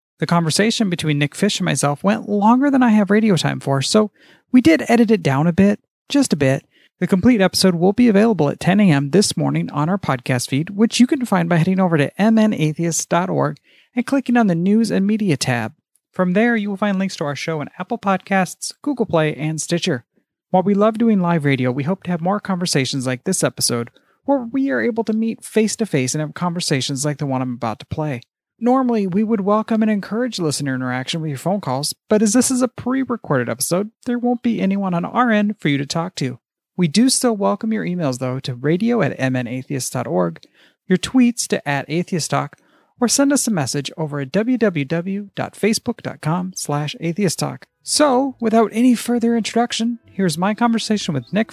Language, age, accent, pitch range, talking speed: English, 40-59, American, 150-225 Hz, 200 wpm